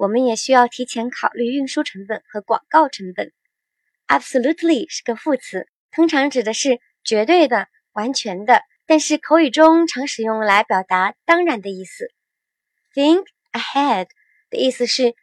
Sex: male